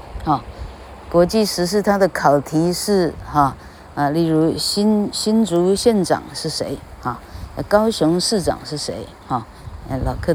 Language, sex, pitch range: Chinese, female, 110-175 Hz